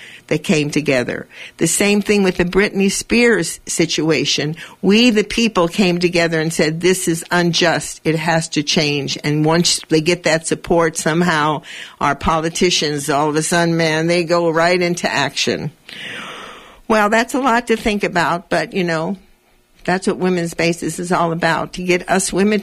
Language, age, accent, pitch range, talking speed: English, 60-79, American, 160-205 Hz, 170 wpm